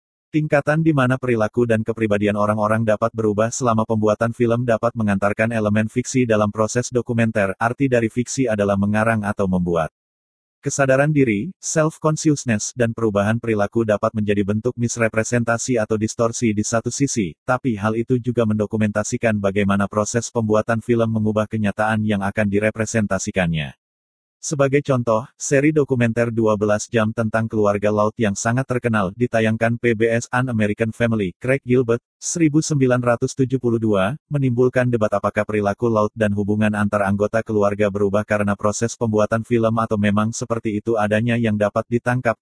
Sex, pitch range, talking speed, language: male, 105-120 Hz, 140 wpm, Indonesian